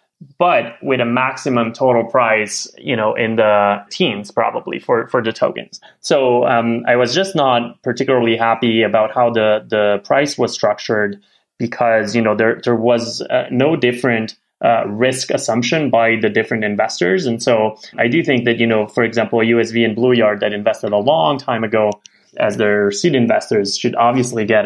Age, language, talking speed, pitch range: 20-39, English, 180 wpm, 105-120 Hz